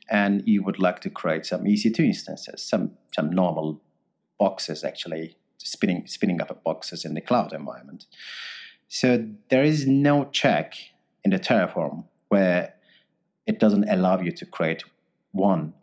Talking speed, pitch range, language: 145 wpm, 90-150 Hz, English